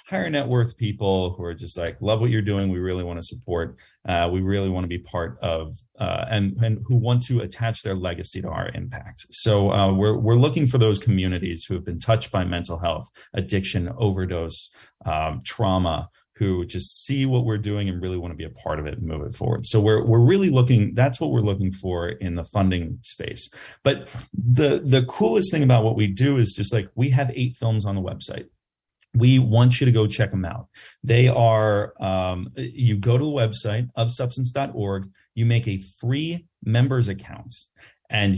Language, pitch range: English, 95-120 Hz